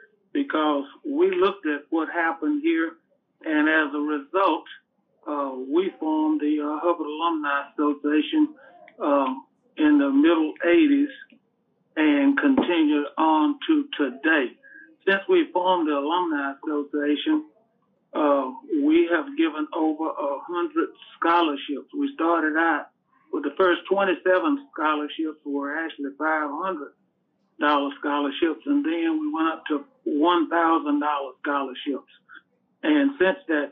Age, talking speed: 50-69, 115 wpm